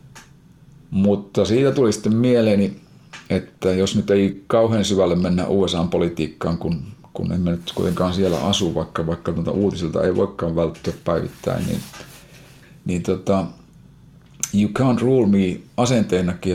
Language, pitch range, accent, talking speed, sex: Finnish, 85-105 Hz, native, 130 wpm, male